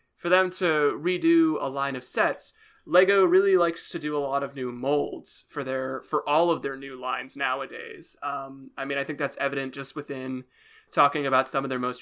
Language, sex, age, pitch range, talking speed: English, male, 20-39, 135-175 Hz, 210 wpm